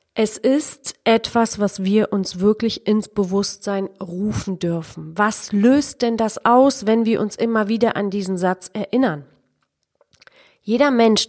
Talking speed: 145 wpm